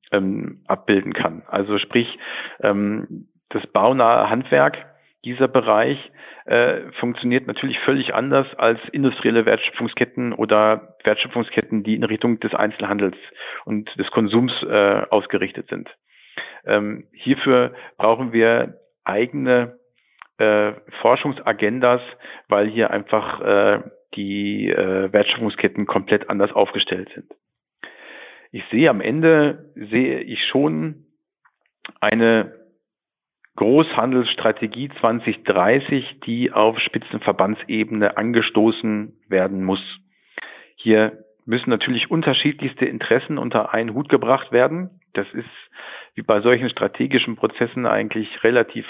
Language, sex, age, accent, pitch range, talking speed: German, male, 50-69, German, 110-125 Hz, 105 wpm